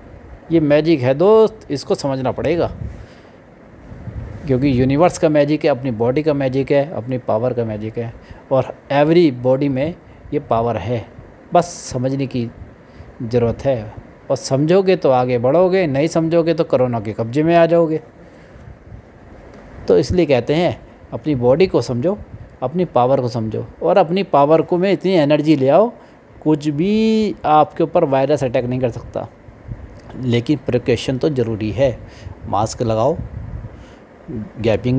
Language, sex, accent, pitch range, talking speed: Hindi, male, native, 120-155 Hz, 145 wpm